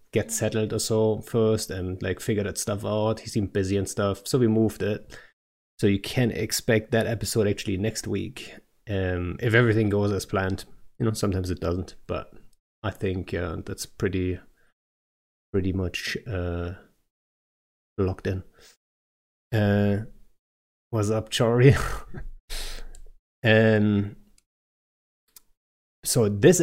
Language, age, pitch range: English, 30-49, 95-115 Hz